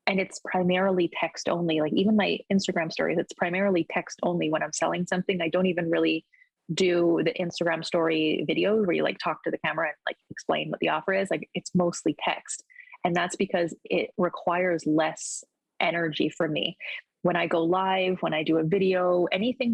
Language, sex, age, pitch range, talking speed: English, female, 20-39, 165-190 Hz, 195 wpm